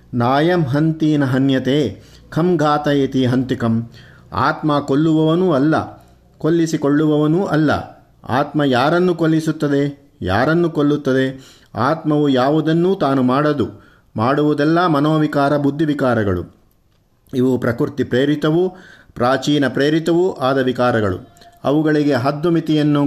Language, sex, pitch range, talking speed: Kannada, male, 130-155 Hz, 80 wpm